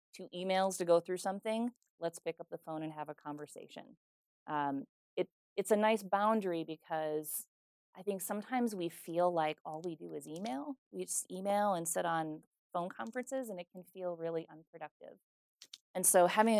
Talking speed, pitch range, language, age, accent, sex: 175 wpm, 155-200 Hz, English, 30-49, American, female